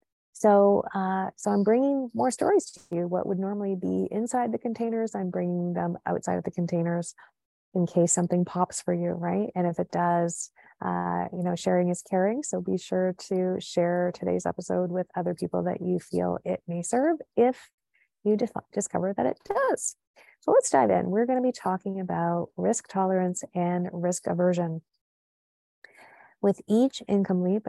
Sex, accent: female, American